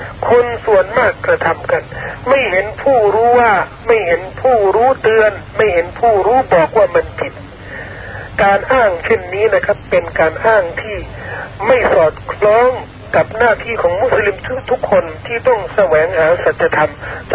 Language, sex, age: Thai, male, 60-79